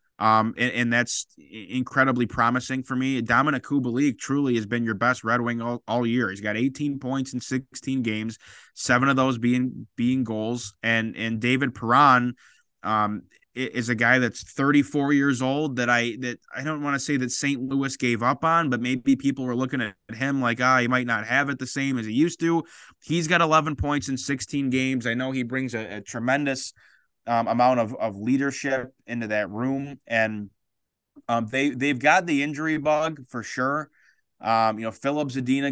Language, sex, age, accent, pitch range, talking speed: English, male, 20-39, American, 115-140 Hz, 200 wpm